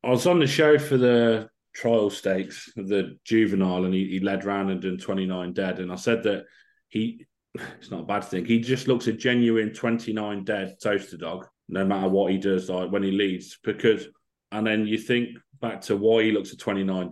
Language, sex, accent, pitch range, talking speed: English, male, British, 95-110 Hz, 210 wpm